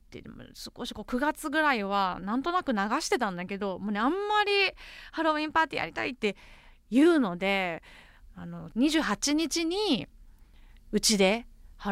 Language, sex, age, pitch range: Japanese, female, 20-39, 200-305 Hz